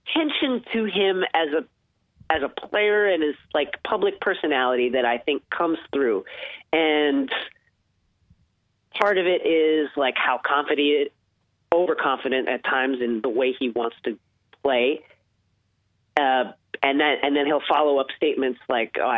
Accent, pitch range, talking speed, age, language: American, 115-165 Hz, 145 wpm, 30-49, English